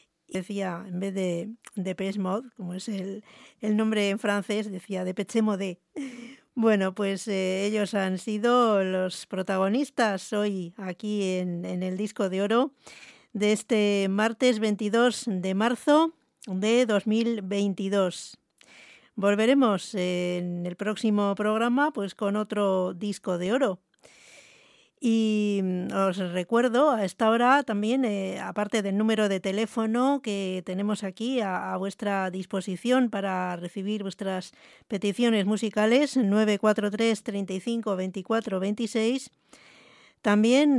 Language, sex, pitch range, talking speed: English, female, 195-225 Hz, 115 wpm